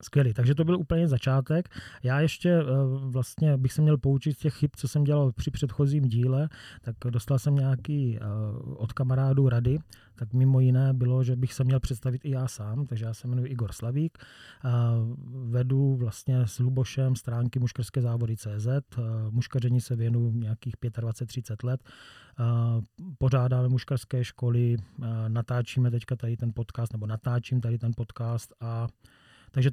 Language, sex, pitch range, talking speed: Czech, male, 120-140 Hz, 155 wpm